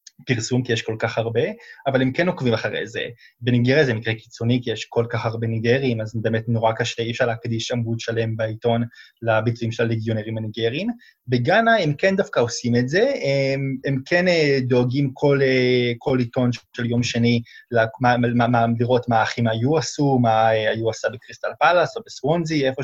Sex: male